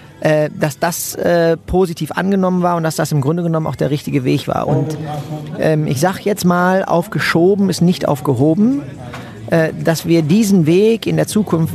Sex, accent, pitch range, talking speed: male, German, 150-170 Hz, 180 wpm